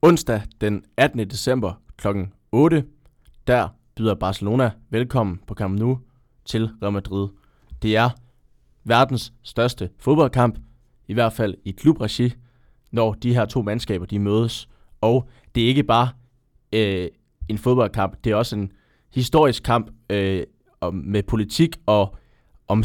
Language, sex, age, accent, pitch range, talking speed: Danish, male, 20-39, native, 100-125 Hz, 135 wpm